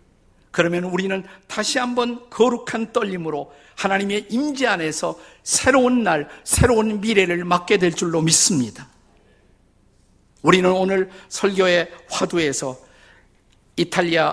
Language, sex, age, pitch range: Korean, male, 50-69, 135-200 Hz